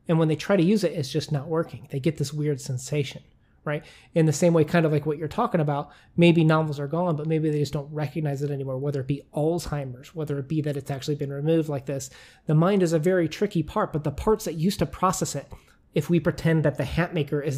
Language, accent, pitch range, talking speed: English, American, 145-170 Hz, 265 wpm